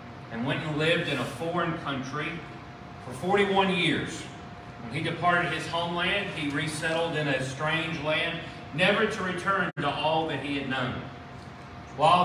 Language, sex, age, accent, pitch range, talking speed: English, male, 40-59, American, 125-165 Hz, 155 wpm